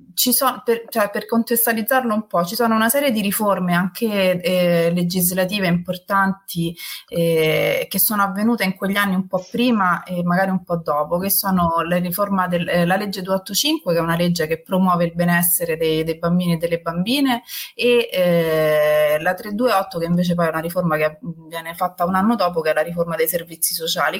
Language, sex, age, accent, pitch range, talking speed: Italian, female, 30-49, native, 170-220 Hz, 195 wpm